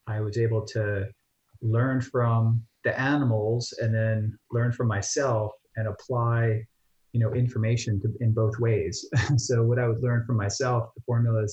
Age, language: 30-49, English